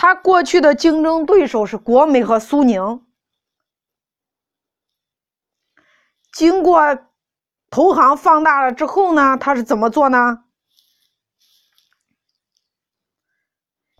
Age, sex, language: 20-39, female, Chinese